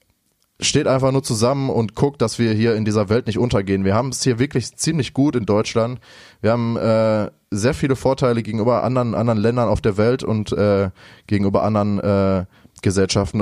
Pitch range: 105-130 Hz